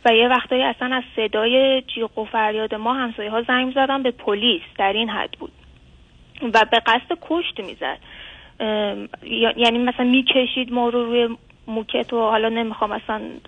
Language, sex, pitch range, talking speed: Persian, female, 220-255 Hz, 155 wpm